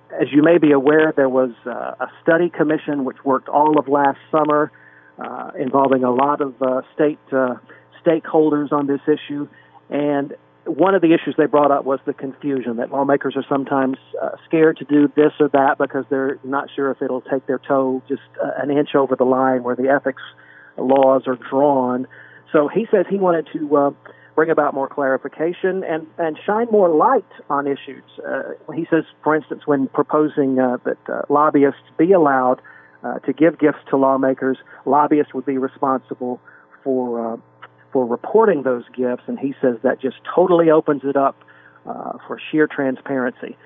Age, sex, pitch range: 50-69, male, 130-150 Hz